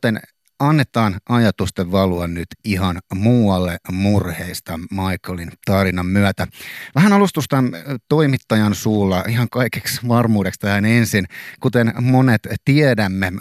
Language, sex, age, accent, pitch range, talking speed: Finnish, male, 30-49, native, 95-115 Hz, 105 wpm